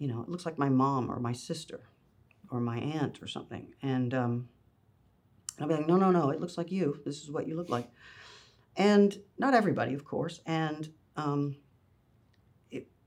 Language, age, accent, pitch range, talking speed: English, 40-59, American, 125-165 Hz, 195 wpm